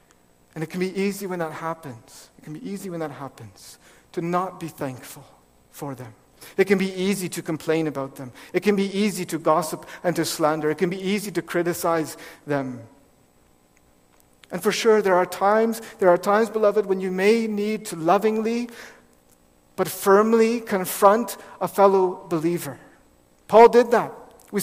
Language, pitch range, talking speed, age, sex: English, 150-225 Hz, 175 wpm, 50-69, male